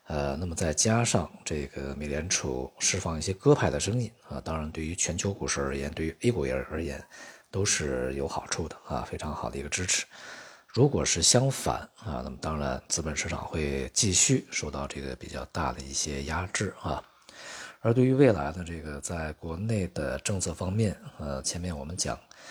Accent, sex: native, male